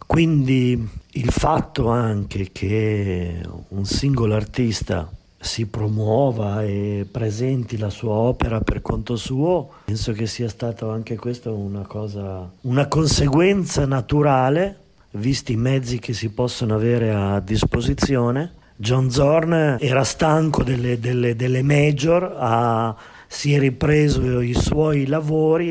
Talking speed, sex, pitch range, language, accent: 125 wpm, male, 110-140 Hz, Italian, native